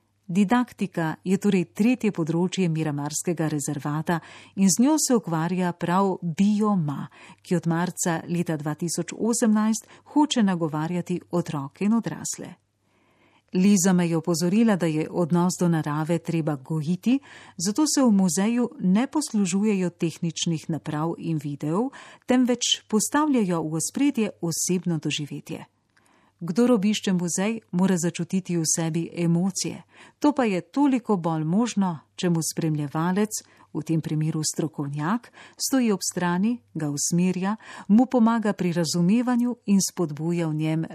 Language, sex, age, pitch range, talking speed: Italian, female, 40-59, 160-210 Hz, 125 wpm